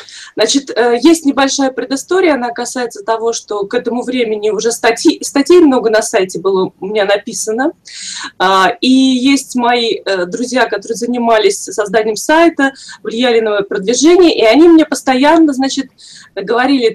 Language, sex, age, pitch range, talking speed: Russian, female, 20-39, 230-305 Hz, 135 wpm